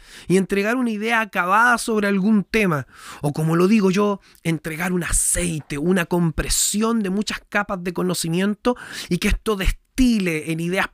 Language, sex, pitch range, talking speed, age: Spanish, male, 150-215 Hz, 160 wpm, 30-49